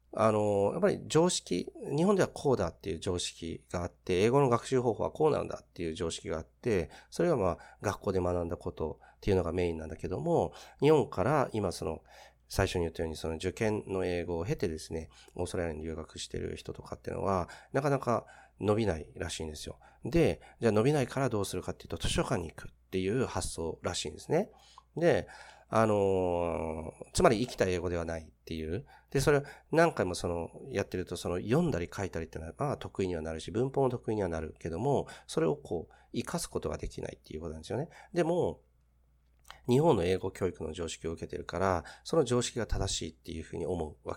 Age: 40-59